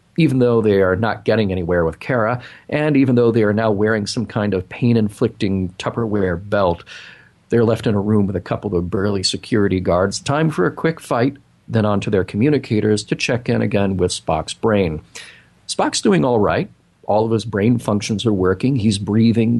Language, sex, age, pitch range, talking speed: English, male, 40-59, 100-125 Hz, 195 wpm